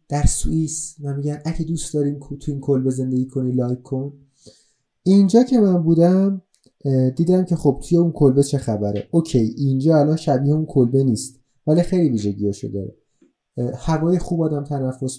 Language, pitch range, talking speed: Persian, 130-180 Hz, 160 wpm